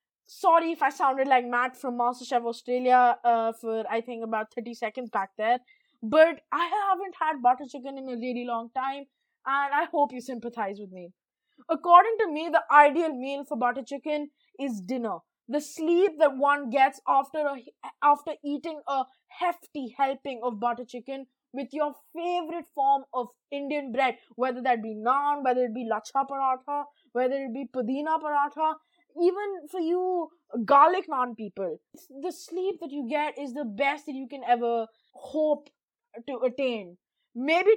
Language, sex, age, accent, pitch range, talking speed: English, female, 20-39, Indian, 250-330 Hz, 165 wpm